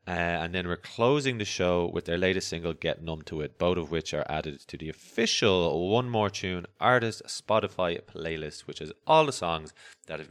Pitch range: 80-120 Hz